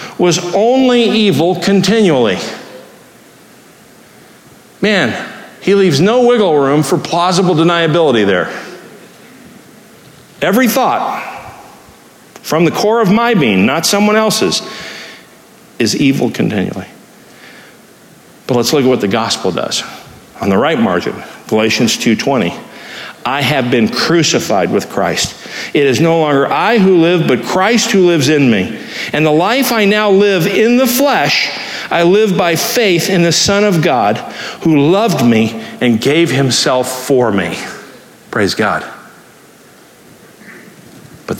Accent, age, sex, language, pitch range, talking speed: American, 50-69, male, English, 155-215 Hz, 130 wpm